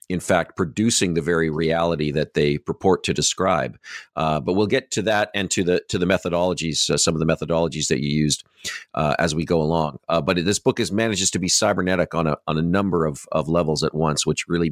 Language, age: English, 50-69